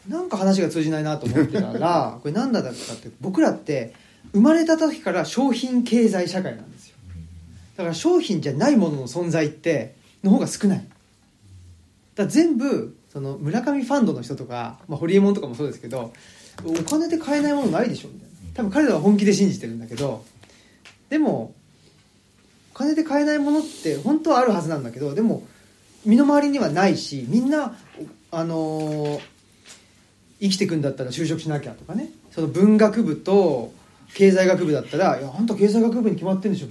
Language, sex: Japanese, male